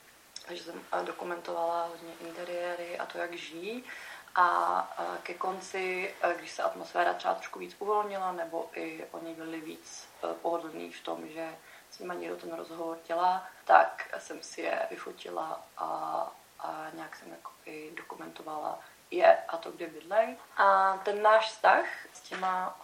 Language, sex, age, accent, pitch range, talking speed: Czech, female, 30-49, native, 165-190 Hz, 150 wpm